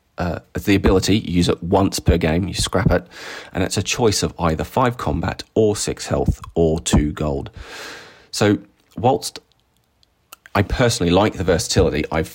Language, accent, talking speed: English, British, 165 wpm